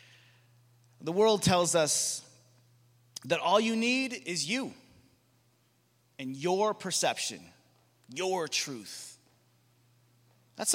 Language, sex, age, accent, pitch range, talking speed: English, male, 30-49, American, 120-155 Hz, 90 wpm